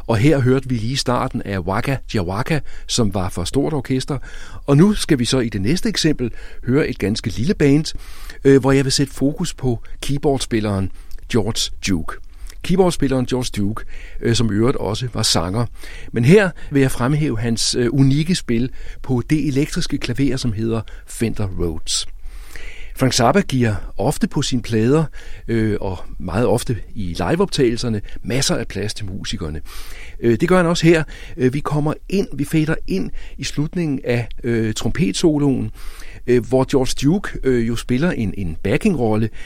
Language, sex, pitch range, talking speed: Danish, male, 100-145 Hz, 160 wpm